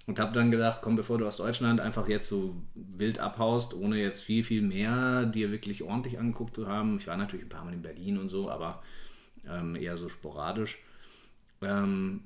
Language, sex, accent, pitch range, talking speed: German, male, German, 100-125 Hz, 200 wpm